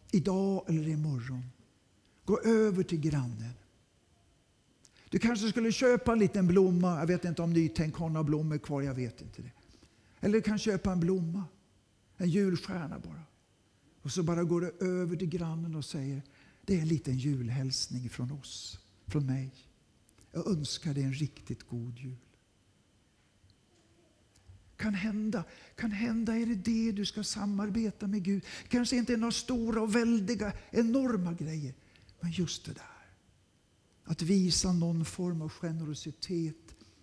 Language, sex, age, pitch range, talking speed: Swedish, male, 60-79, 130-205 Hz, 150 wpm